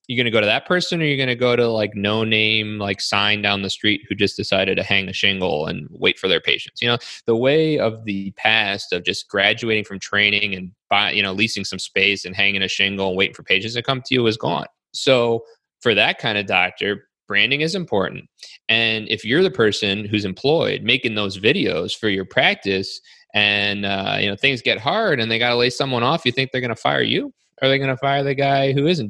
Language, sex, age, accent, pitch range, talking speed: English, male, 20-39, American, 100-130 Hz, 240 wpm